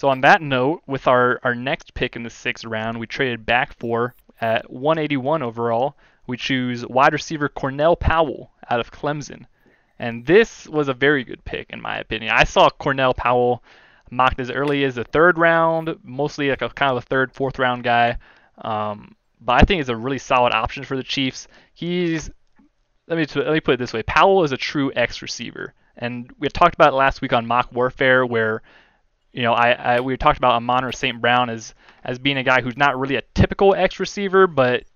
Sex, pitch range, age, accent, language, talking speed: male, 120-145 Hz, 20-39, American, English, 210 wpm